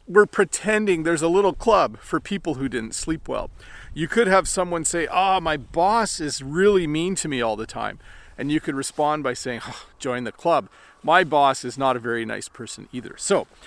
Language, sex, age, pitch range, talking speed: English, male, 40-59, 150-200 Hz, 215 wpm